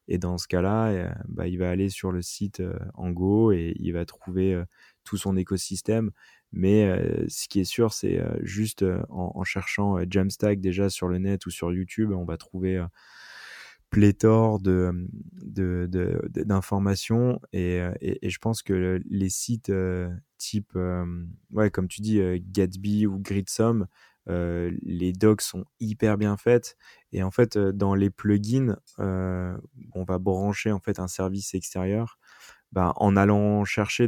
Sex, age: male, 20-39